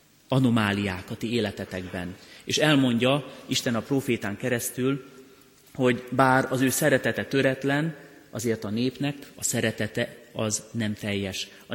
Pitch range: 105-125 Hz